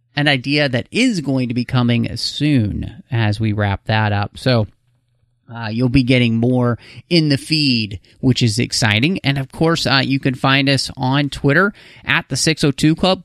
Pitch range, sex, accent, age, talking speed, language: 115-140 Hz, male, American, 30-49, 170 wpm, English